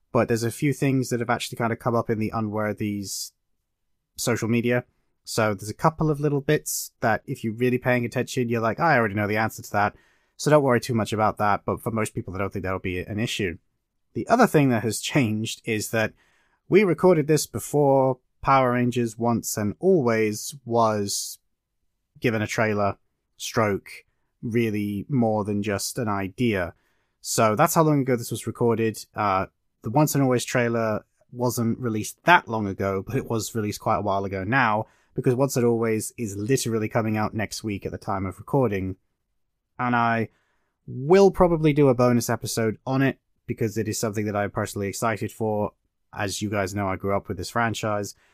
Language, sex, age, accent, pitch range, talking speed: English, male, 30-49, British, 105-125 Hz, 195 wpm